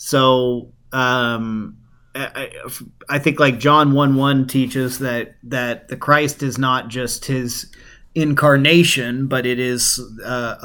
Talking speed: 130 wpm